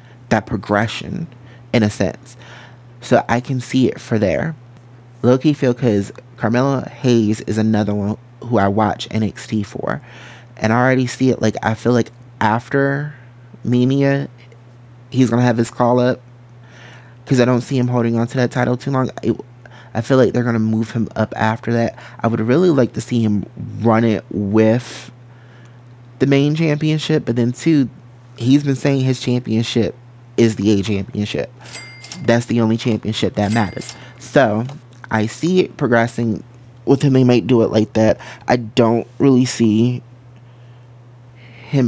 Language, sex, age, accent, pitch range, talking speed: English, male, 20-39, American, 110-125 Hz, 160 wpm